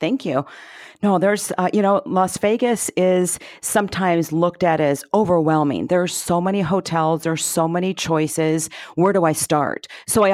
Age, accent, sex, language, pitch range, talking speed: 40-59, American, female, English, 150-175 Hz, 170 wpm